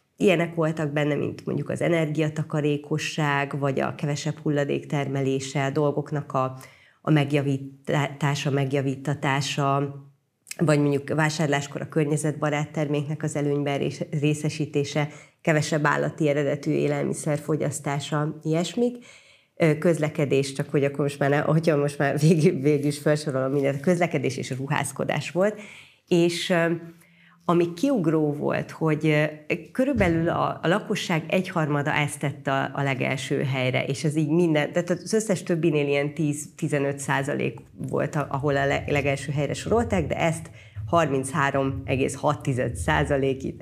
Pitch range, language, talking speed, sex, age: 140-165 Hz, Hungarian, 120 wpm, female, 30-49